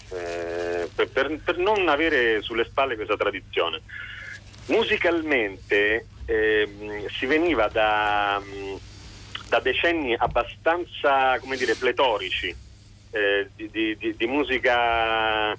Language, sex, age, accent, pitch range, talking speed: Italian, male, 40-59, native, 100-130 Hz, 100 wpm